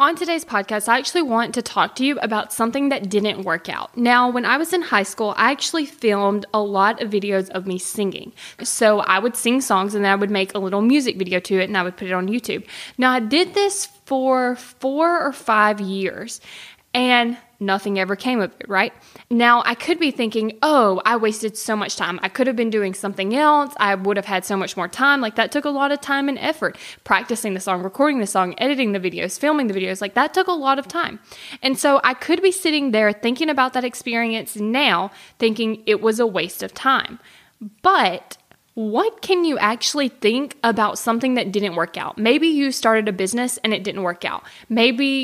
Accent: American